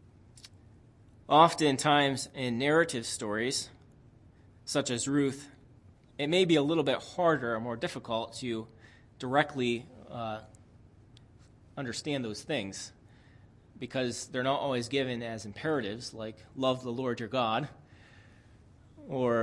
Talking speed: 115 wpm